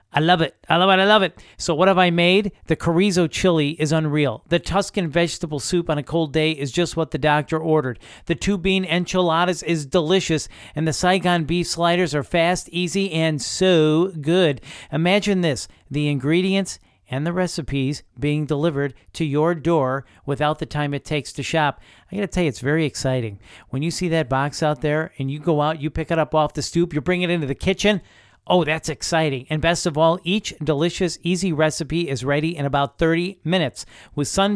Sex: male